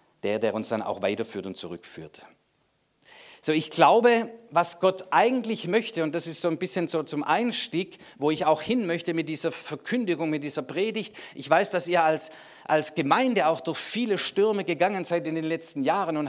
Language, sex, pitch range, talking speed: German, male, 150-185 Hz, 195 wpm